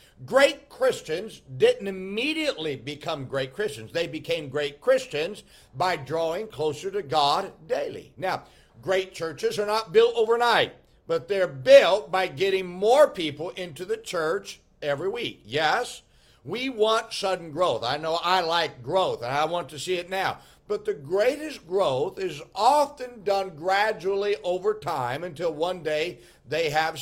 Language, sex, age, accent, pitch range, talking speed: English, male, 60-79, American, 155-230 Hz, 150 wpm